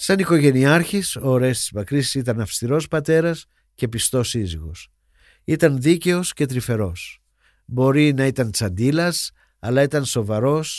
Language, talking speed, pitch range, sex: Greek, 120 wpm, 110-155 Hz, male